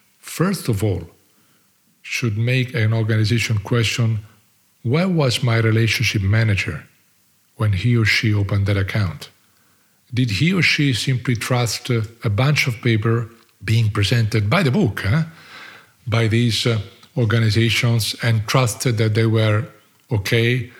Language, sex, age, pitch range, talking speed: English, male, 40-59, 110-130 Hz, 130 wpm